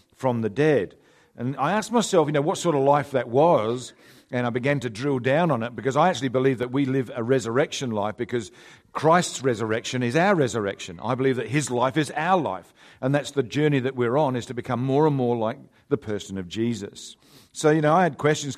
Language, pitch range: English, 120-145 Hz